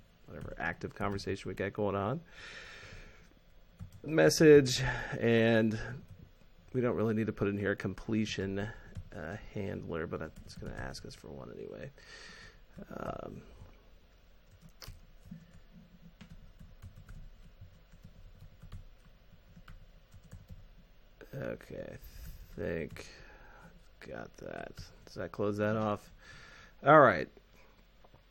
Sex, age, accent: male, 30-49, American